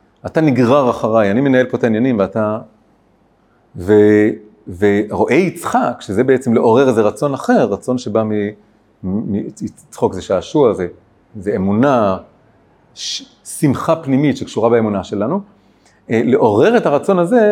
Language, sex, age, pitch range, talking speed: Hebrew, male, 40-59, 105-135 Hz, 140 wpm